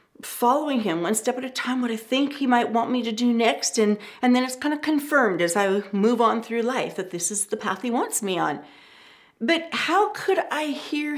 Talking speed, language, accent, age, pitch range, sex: 235 wpm, English, American, 40-59, 215-295 Hz, female